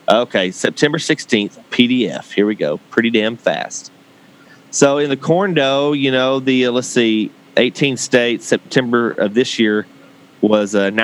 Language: English